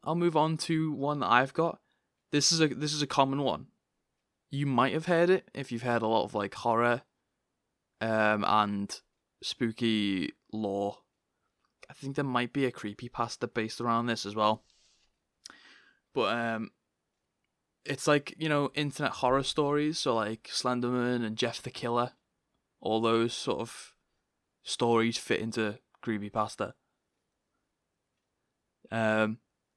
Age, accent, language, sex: 20-39, British, English, male